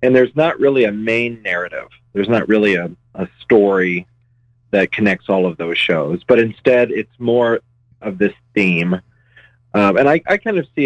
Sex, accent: male, American